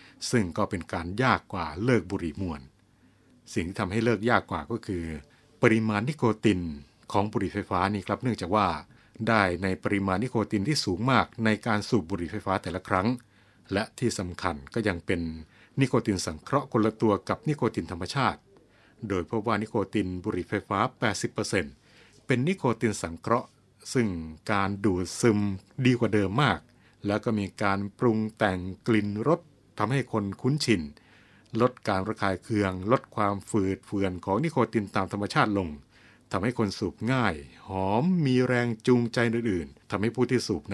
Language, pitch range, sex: Thai, 95-120 Hz, male